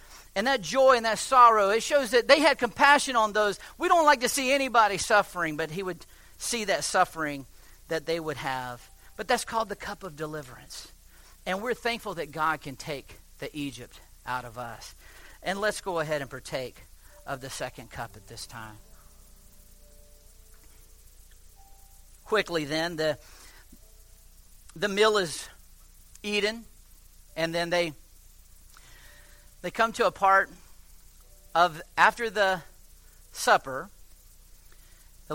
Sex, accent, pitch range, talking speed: male, American, 140-220 Hz, 140 wpm